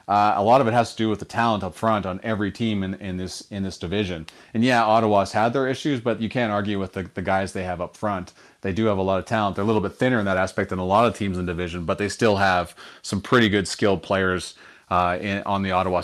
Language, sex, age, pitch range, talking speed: English, male, 30-49, 95-110 Hz, 290 wpm